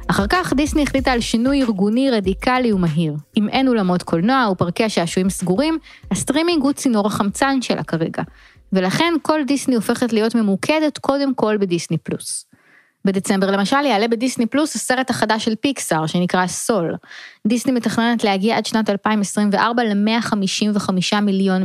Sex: female